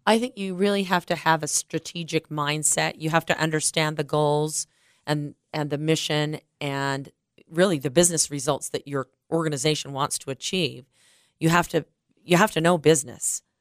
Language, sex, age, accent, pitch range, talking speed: English, female, 40-59, American, 145-170 Hz, 170 wpm